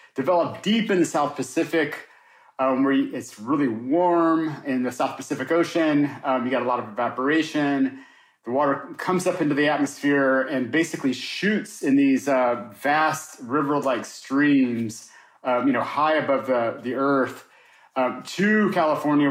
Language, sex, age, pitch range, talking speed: English, male, 40-59, 130-165 Hz, 155 wpm